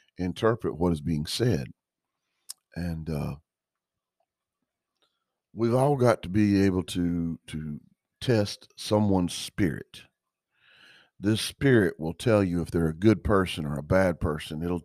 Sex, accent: male, American